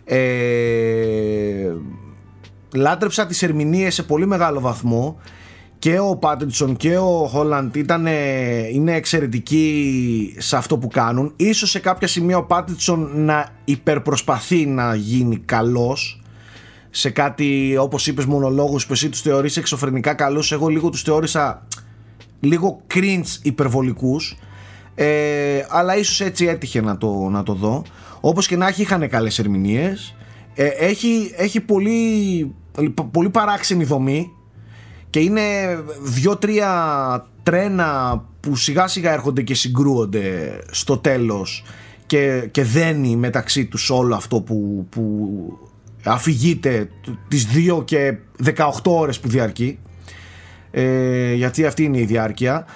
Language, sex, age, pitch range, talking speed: Greek, male, 30-49, 115-160 Hz, 120 wpm